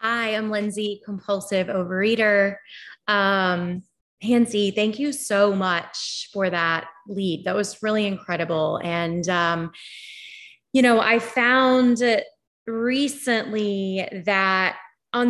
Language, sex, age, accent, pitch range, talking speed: English, female, 20-39, American, 180-225 Hz, 105 wpm